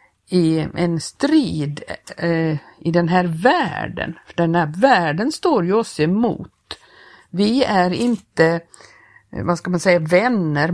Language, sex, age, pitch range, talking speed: Swedish, female, 50-69, 165-215 Hz, 135 wpm